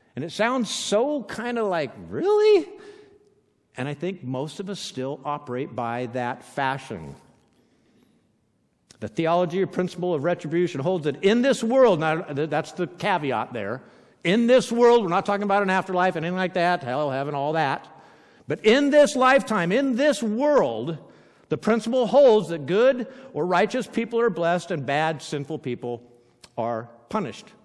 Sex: male